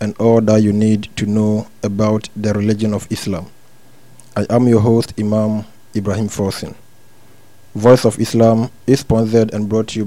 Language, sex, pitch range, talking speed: English, male, 105-120 Hz, 165 wpm